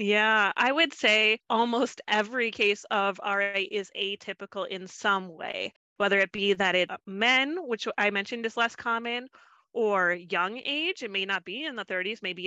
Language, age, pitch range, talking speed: English, 30-49, 185-230 Hz, 180 wpm